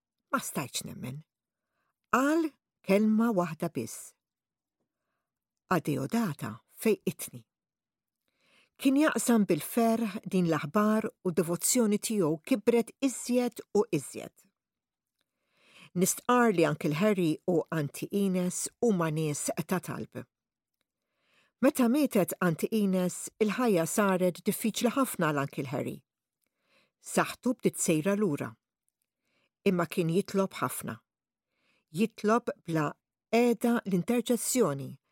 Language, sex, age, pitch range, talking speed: English, female, 60-79, 160-230 Hz, 75 wpm